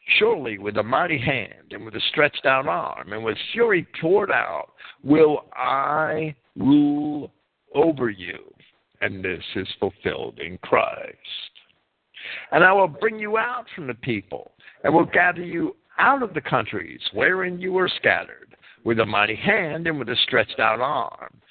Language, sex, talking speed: English, male, 160 wpm